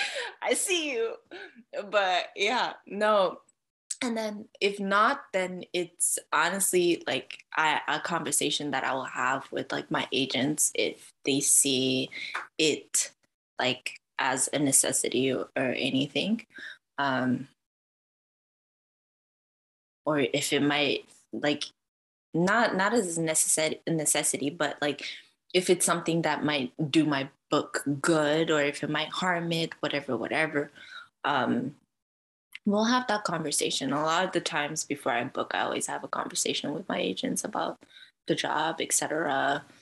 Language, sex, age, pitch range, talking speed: English, female, 20-39, 145-200 Hz, 135 wpm